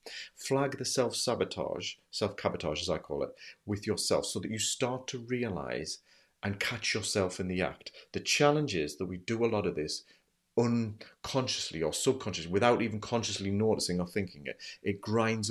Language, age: English, 40-59